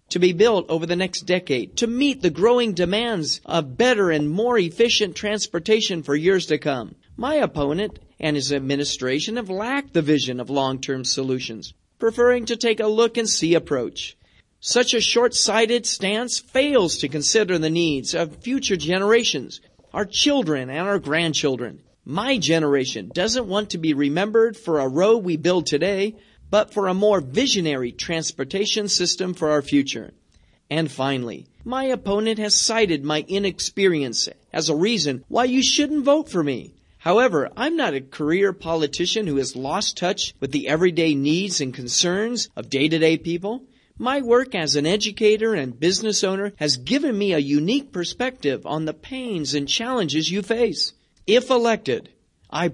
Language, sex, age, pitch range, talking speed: Persian, male, 50-69, 145-225 Hz, 160 wpm